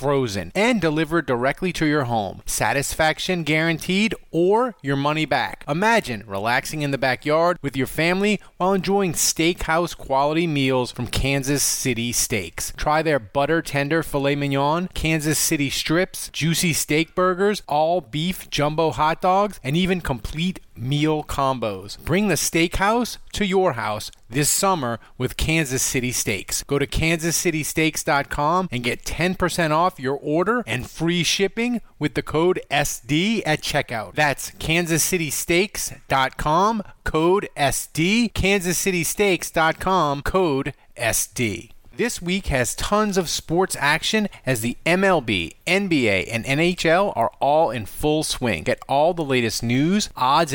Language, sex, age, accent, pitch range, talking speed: English, male, 30-49, American, 135-180 Hz, 135 wpm